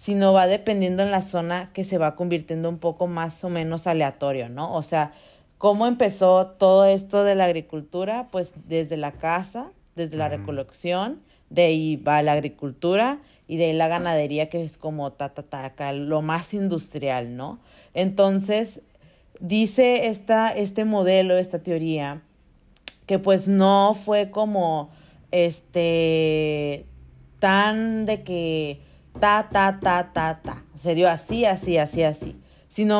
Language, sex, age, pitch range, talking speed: Spanish, female, 40-59, 155-200 Hz, 145 wpm